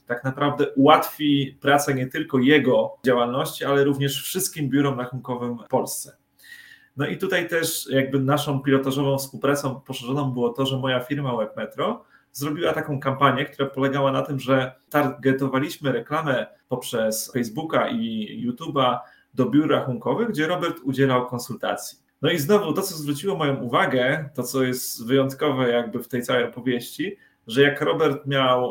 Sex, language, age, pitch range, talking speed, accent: male, Polish, 30-49, 125-150 Hz, 150 wpm, native